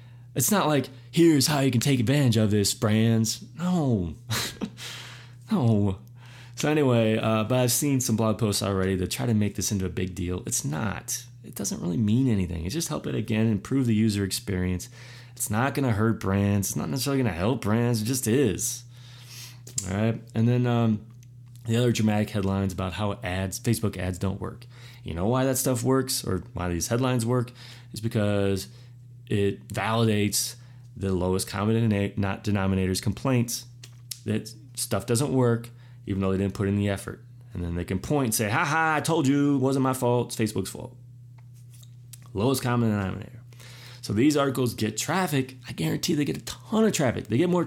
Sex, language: male, English